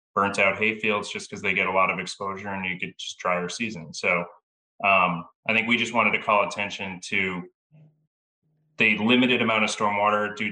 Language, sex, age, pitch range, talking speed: English, male, 20-39, 90-105 Hz, 200 wpm